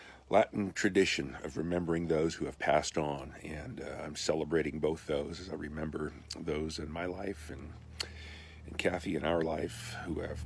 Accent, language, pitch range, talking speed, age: American, English, 75-95 Hz, 170 wpm, 50-69